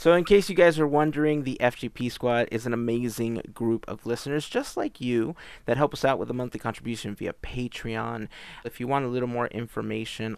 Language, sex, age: English, male, 30-49